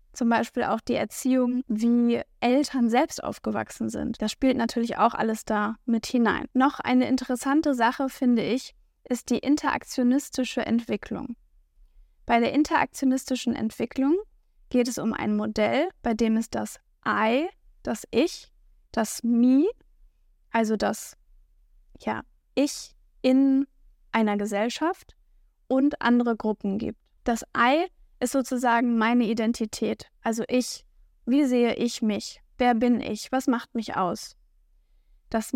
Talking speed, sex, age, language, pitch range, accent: 130 wpm, female, 10-29, German, 220-260 Hz, German